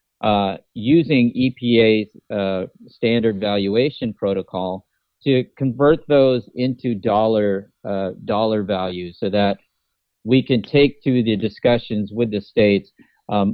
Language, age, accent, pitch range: English, 40-59, American, 100-125 Hz